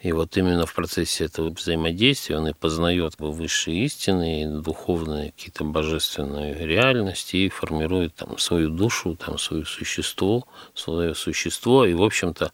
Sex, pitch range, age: male, 80-100 Hz, 50-69